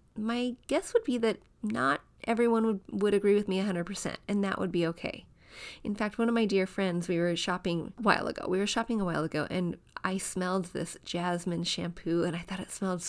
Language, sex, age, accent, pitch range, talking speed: English, female, 30-49, American, 175-220 Hz, 220 wpm